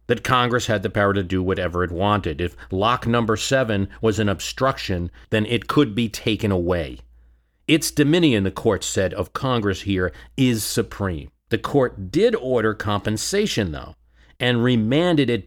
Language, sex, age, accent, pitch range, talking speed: English, male, 40-59, American, 90-120 Hz, 165 wpm